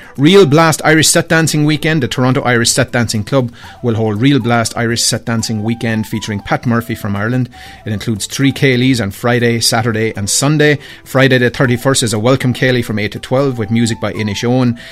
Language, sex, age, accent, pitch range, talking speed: English, male, 30-49, Irish, 110-135 Hz, 200 wpm